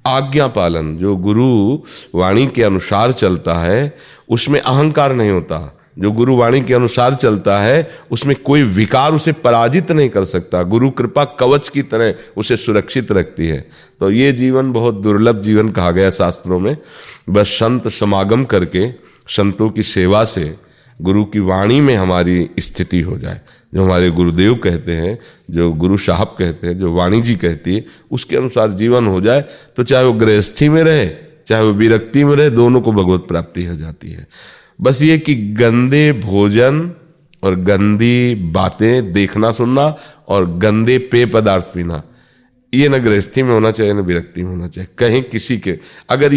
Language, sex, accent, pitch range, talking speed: Hindi, male, native, 95-130 Hz, 170 wpm